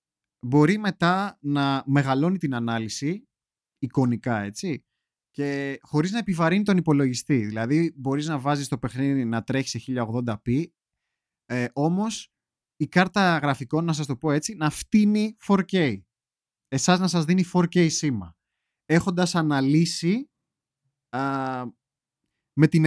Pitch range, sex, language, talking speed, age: 125-165 Hz, male, Greek, 120 wpm, 30-49